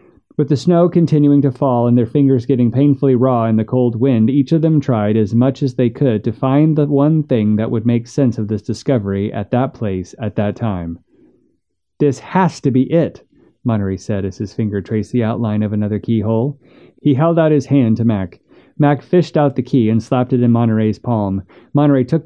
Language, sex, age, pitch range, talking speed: English, male, 30-49, 110-140 Hz, 215 wpm